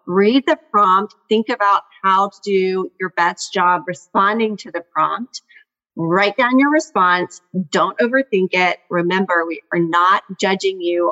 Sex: female